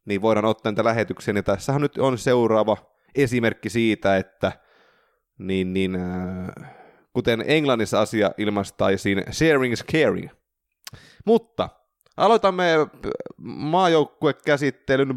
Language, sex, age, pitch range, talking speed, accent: Finnish, male, 20-39, 100-135 Hz, 105 wpm, native